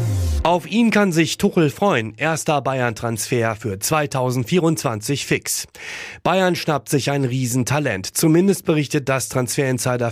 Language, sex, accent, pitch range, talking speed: German, male, German, 115-150 Hz, 120 wpm